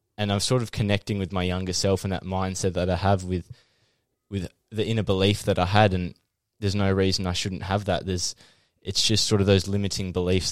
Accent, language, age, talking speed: Australian, English, 10-29, 220 wpm